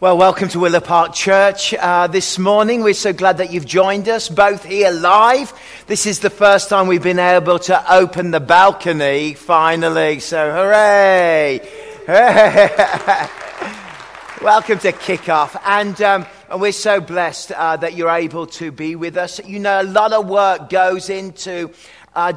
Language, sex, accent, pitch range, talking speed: English, male, British, 170-195 Hz, 160 wpm